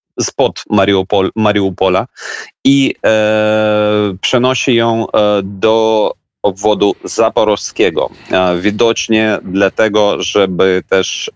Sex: male